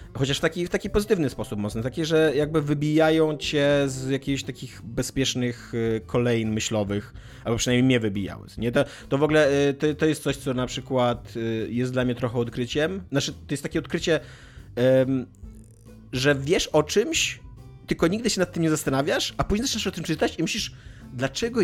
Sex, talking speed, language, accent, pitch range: male, 185 wpm, Polish, native, 115-145 Hz